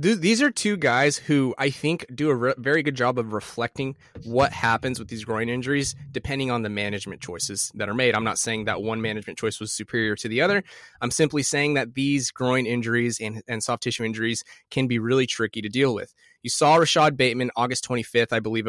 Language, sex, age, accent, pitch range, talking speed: English, male, 20-39, American, 115-145 Hz, 215 wpm